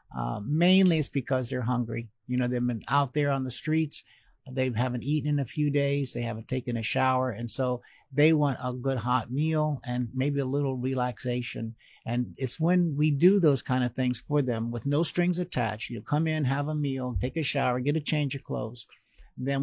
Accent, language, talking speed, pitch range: American, English, 215 wpm, 125-150 Hz